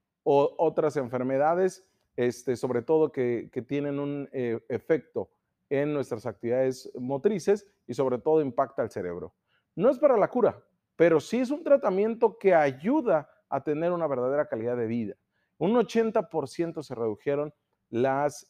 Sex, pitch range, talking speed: male, 125-190 Hz, 150 wpm